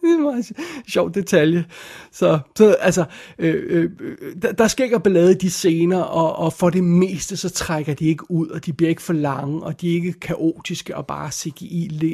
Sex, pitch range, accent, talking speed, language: male, 160-195 Hz, native, 205 wpm, Danish